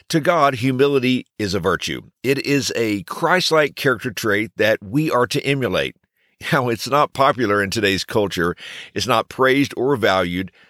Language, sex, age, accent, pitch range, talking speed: English, male, 50-69, American, 105-140 Hz, 165 wpm